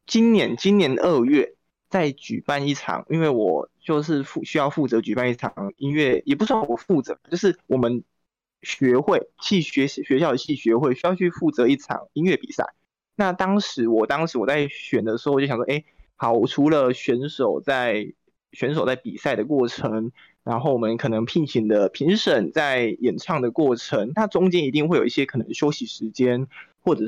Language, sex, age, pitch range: Chinese, male, 20-39, 125-185 Hz